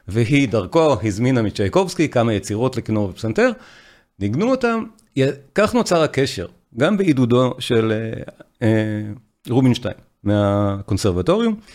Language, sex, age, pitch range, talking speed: Hebrew, male, 40-59, 110-145 Hz, 100 wpm